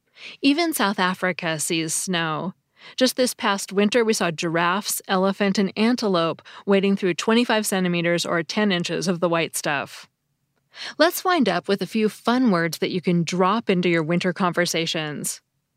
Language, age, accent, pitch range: English, 20-39, American, 165-210 Hz